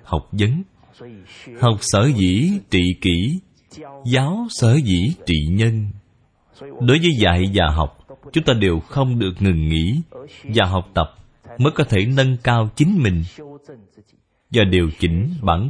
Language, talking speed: Vietnamese, 145 wpm